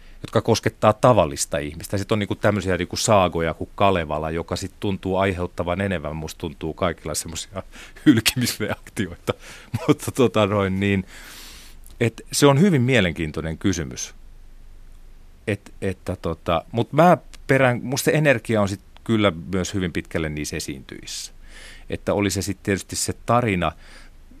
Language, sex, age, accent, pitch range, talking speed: Finnish, male, 40-59, native, 80-110 Hz, 125 wpm